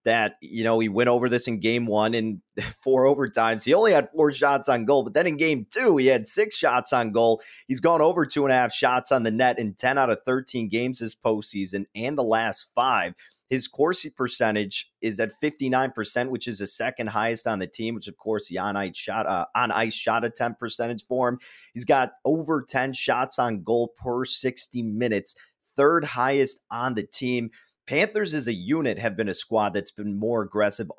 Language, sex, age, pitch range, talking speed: English, male, 30-49, 100-125 Hz, 215 wpm